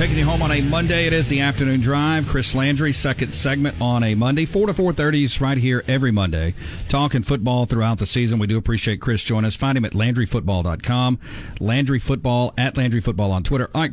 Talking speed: 200 wpm